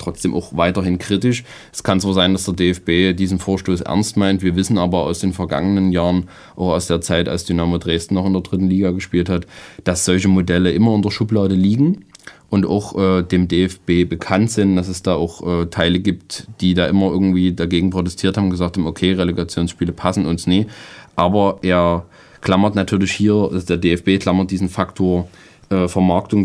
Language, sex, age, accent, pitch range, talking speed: German, male, 20-39, German, 90-100 Hz, 195 wpm